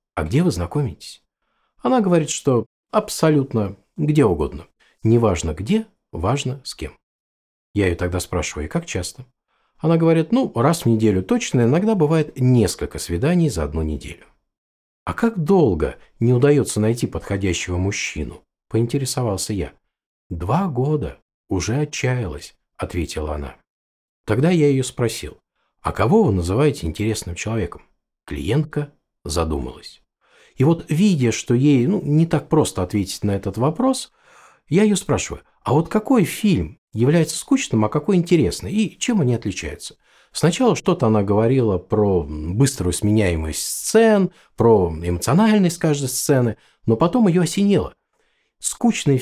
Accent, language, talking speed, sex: native, Russian, 135 wpm, male